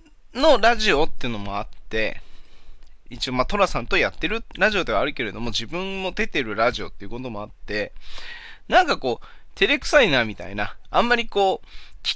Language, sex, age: Japanese, male, 20-39